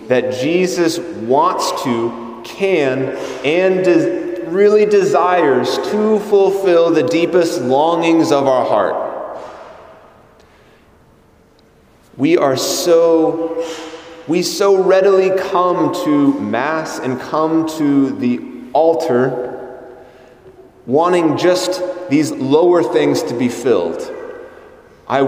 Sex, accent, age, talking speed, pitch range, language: male, American, 30-49, 95 wpm, 135-190 Hz, English